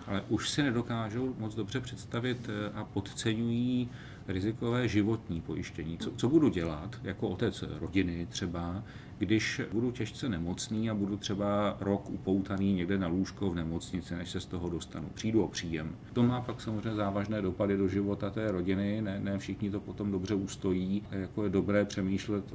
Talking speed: 170 wpm